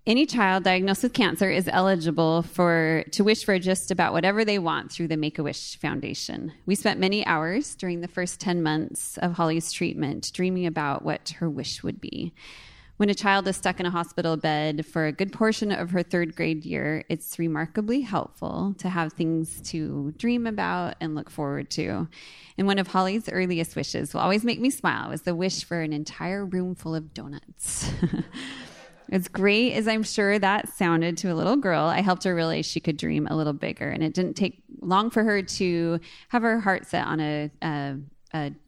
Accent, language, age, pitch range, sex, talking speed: American, English, 20-39, 160-195 Hz, female, 195 wpm